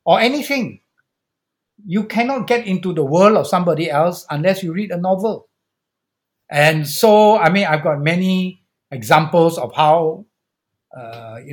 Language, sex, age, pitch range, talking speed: English, male, 60-79, 125-180 Hz, 145 wpm